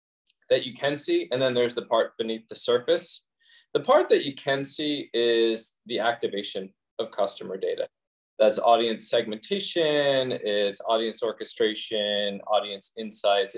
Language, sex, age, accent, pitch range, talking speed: English, male, 20-39, American, 105-160 Hz, 140 wpm